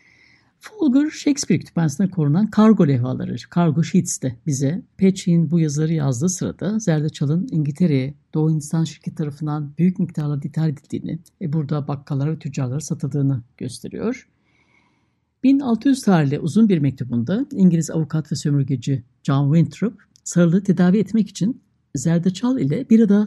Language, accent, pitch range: Turkish, native, 145-205 Hz